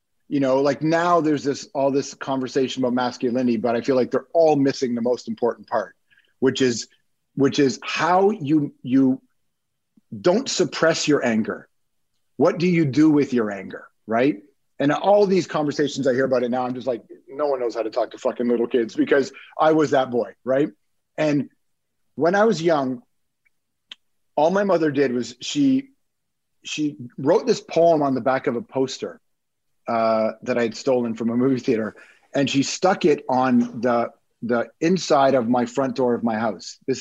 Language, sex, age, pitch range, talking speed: English, male, 40-59, 125-155 Hz, 185 wpm